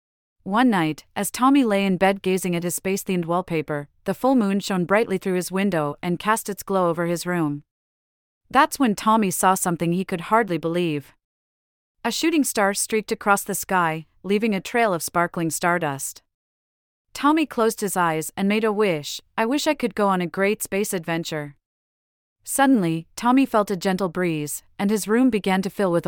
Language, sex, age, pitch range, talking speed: English, female, 30-49, 165-215 Hz, 185 wpm